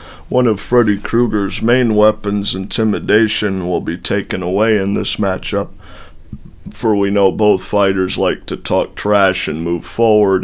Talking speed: 150 wpm